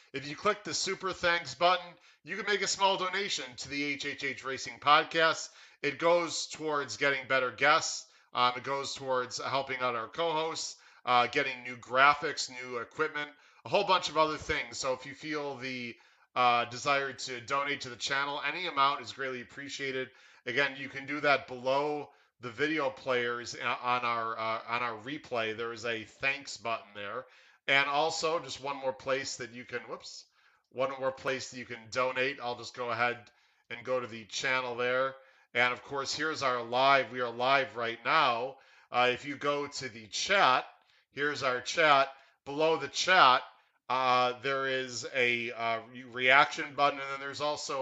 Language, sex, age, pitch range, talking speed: English, male, 40-59, 120-145 Hz, 180 wpm